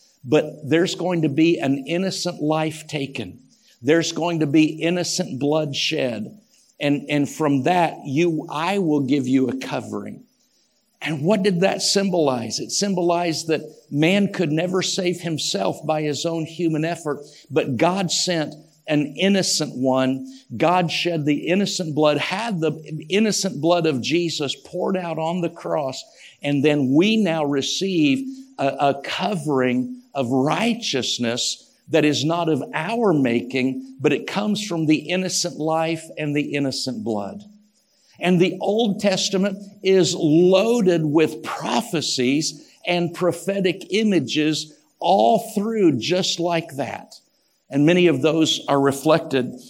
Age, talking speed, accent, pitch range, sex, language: 50-69, 140 wpm, American, 140-180 Hz, male, English